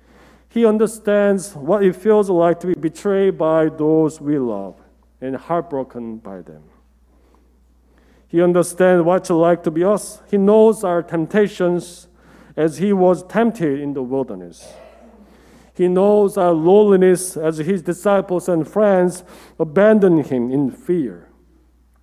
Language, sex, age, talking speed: English, male, 50-69, 135 wpm